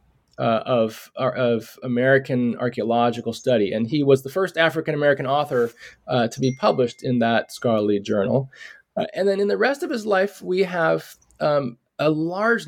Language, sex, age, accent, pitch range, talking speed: English, male, 20-39, American, 130-165 Hz, 165 wpm